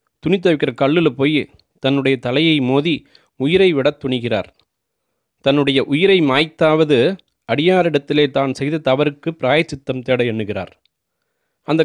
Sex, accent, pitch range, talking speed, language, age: male, native, 130-155 Hz, 105 wpm, Tamil, 30-49